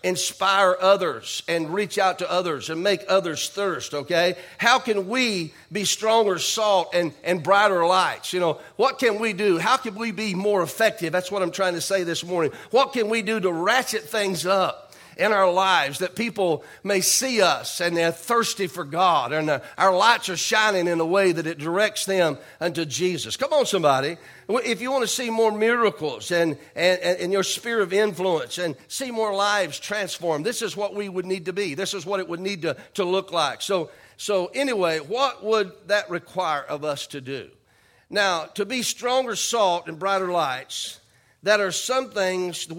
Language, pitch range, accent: English, 170-210 Hz, American